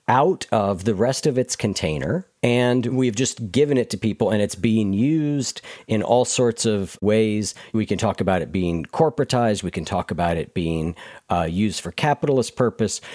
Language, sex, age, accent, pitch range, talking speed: English, male, 50-69, American, 100-135 Hz, 185 wpm